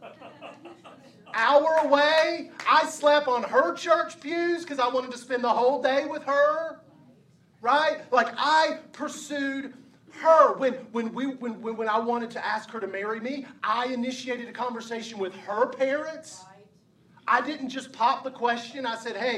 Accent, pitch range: American, 175-250 Hz